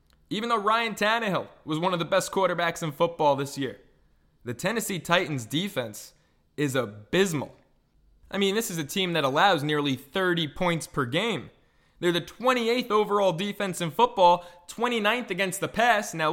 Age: 20-39